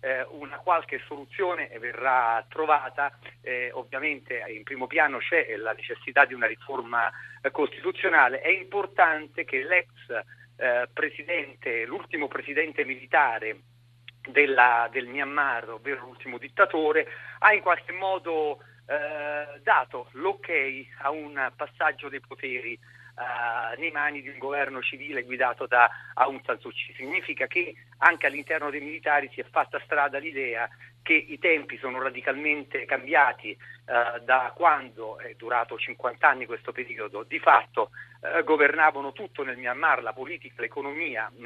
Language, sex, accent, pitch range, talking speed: Italian, male, native, 125-160 Hz, 135 wpm